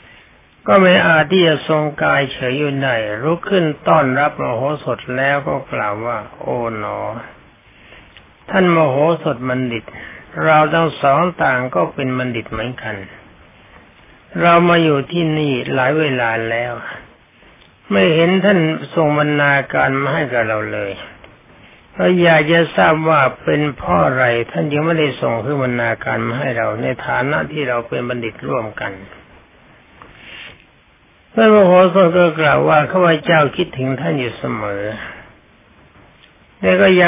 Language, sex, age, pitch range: Thai, male, 60-79, 125-165 Hz